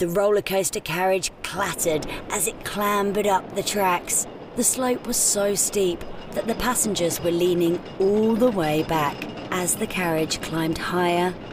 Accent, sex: British, female